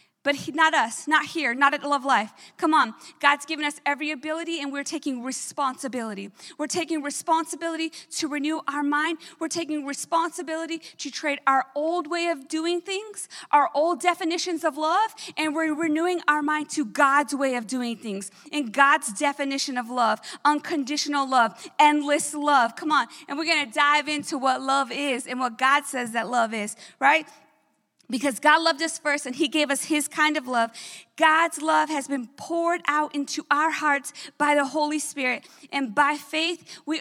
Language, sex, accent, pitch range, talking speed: English, female, American, 275-320 Hz, 180 wpm